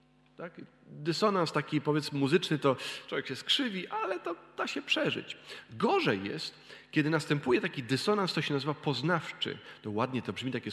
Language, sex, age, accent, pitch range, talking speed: Polish, male, 40-59, native, 135-210 Hz, 155 wpm